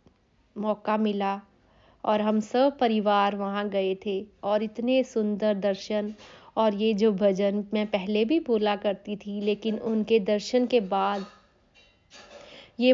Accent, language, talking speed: native, Hindi, 135 wpm